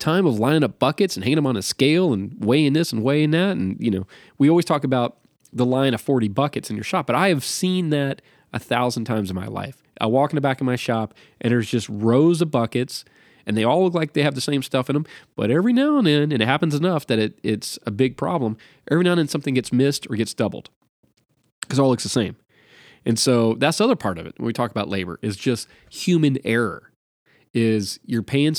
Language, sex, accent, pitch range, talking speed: English, male, American, 110-145 Hz, 250 wpm